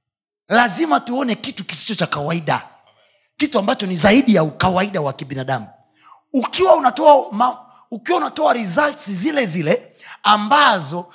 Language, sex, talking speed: Swahili, male, 125 wpm